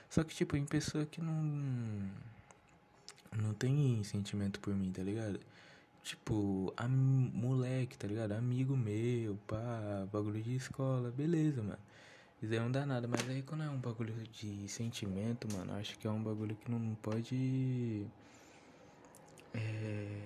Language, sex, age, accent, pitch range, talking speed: Portuguese, male, 20-39, Brazilian, 110-140 Hz, 150 wpm